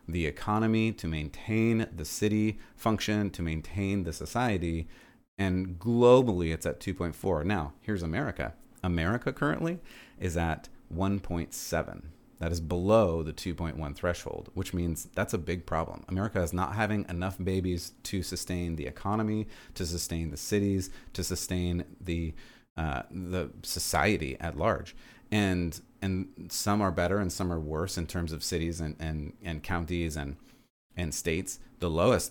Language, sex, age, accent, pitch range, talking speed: English, male, 30-49, American, 85-100 Hz, 150 wpm